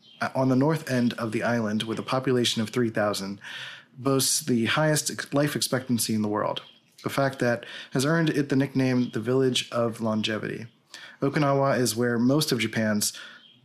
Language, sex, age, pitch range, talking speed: English, male, 30-49, 115-135 Hz, 175 wpm